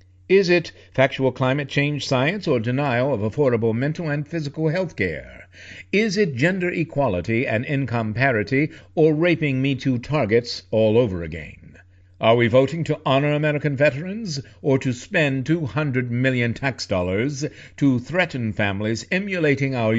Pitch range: 110-150 Hz